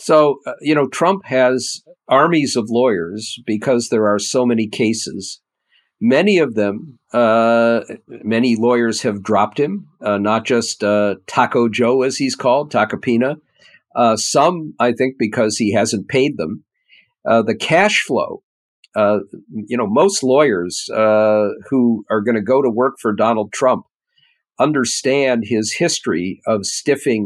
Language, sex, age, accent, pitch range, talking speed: English, male, 50-69, American, 110-135 Hz, 150 wpm